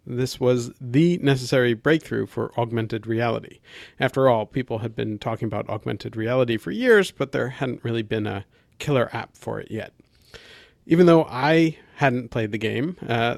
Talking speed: 170 wpm